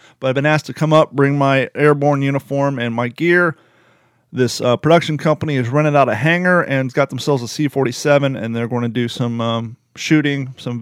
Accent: American